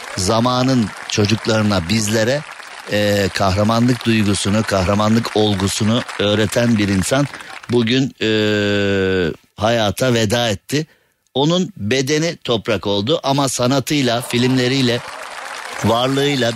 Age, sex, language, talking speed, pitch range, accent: 50-69, male, Turkish, 85 wpm, 100-120 Hz, native